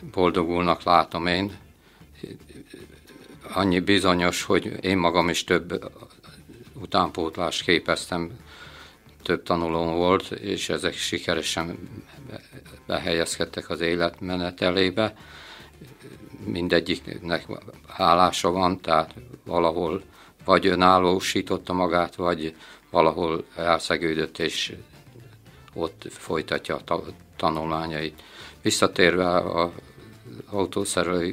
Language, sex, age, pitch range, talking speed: Hungarian, male, 50-69, 85-95 Hz, 80 wpm